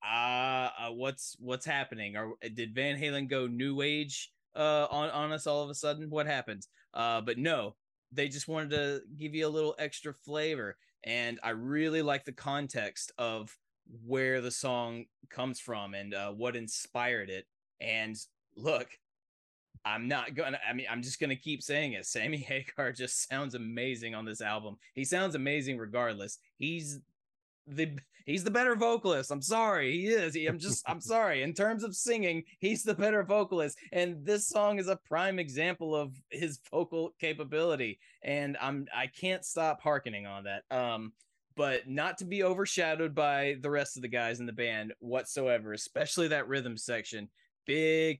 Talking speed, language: 175 wpm, English